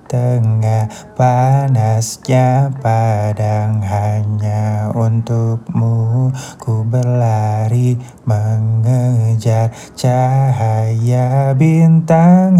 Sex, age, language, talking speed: male, 20-39, Indonesian, 50 wpm